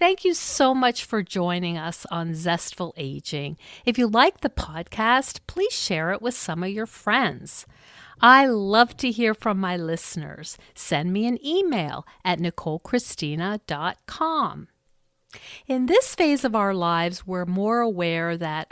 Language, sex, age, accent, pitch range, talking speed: English, female, 50-69, American, 170-240 Hz, 145 wpm